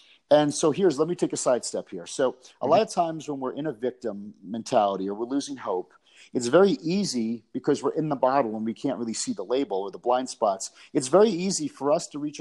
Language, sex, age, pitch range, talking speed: English, male, 40-59, 115-160 Hz, 240 wpm